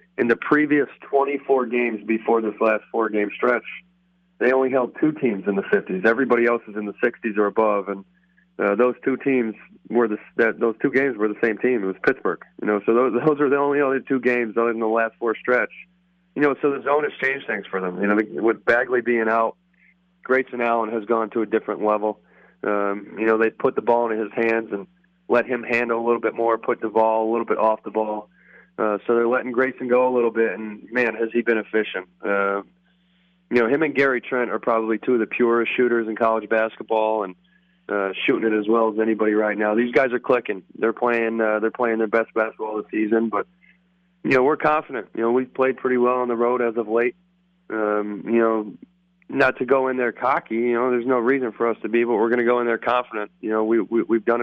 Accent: American